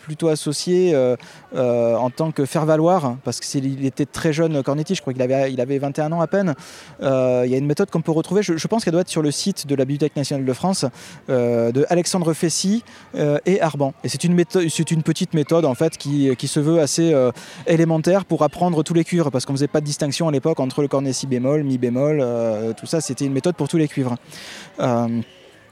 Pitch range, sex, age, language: 130-170 Hz, male, 20-39, French